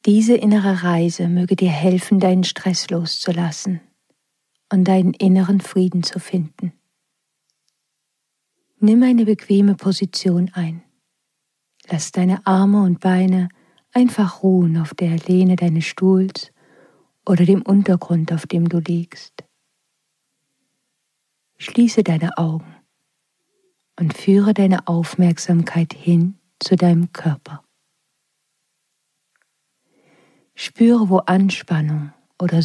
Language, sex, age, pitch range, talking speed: German, female, 50-69, 170-195 Hz, 100 wpm